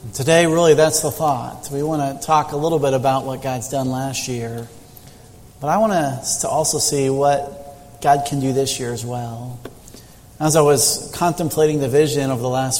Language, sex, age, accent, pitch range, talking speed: English, male, 40-59, American, 125-150 Hz, 190 wpm